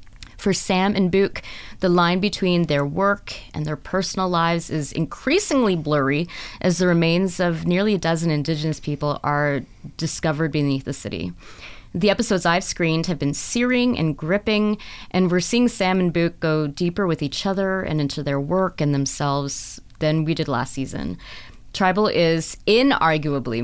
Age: 20-39